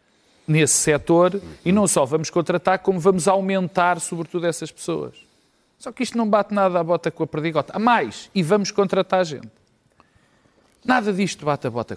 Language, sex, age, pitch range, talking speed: Portuguese, male, 40-59, 155-210 Hz, 180 wpm